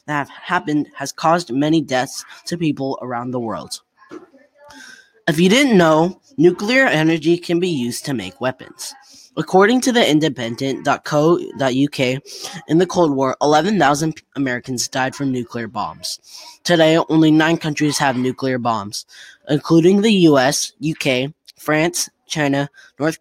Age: 20-39